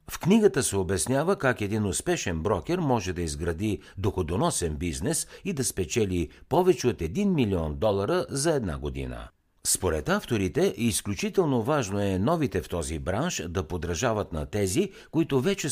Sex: male